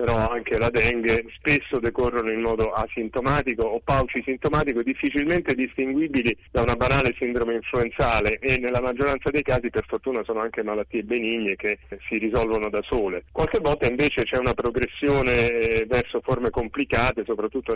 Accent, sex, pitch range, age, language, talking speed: native, male, 115-135 Hz, 30-49, Italian, 150 wpm